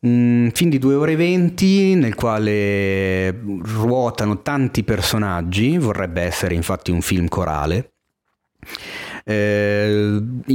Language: Italian